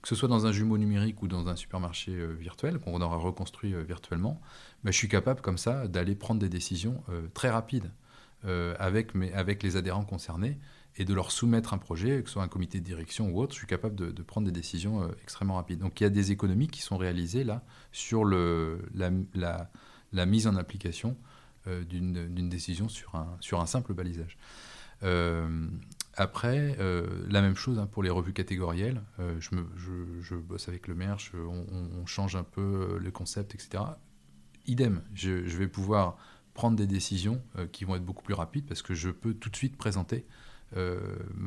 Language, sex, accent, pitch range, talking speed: French, male, French, 90-110 Hz, 205 wpm